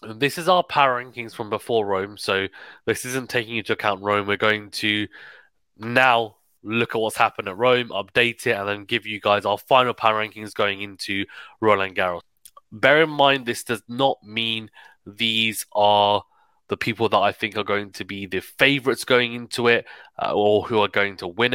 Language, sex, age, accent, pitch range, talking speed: English, male, 20-39, British, 100-120 Hz, 195 wpm